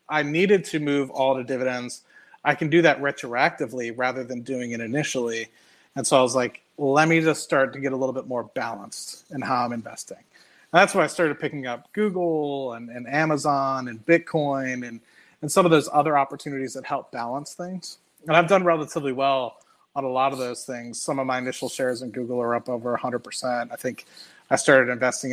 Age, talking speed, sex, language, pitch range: 30-49, 210 wpm, male, English, 125-155 Hz